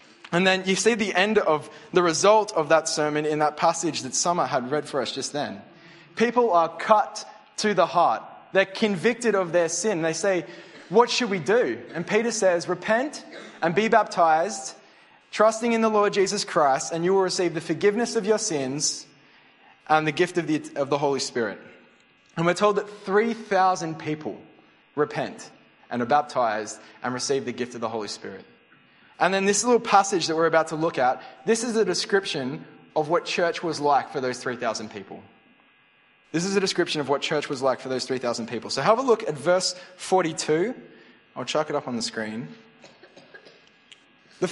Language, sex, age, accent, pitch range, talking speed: English, male, 20-39, Australian, 140-200 Hz, 190 wpm